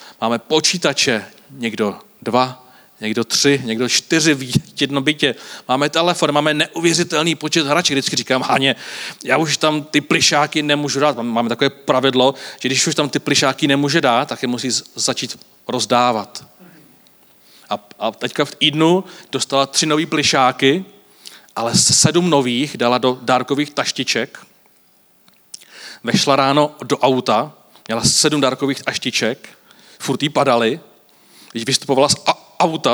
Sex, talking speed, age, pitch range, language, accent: male, 135 wpm, 40-59, 120-145 Hz, Czech, native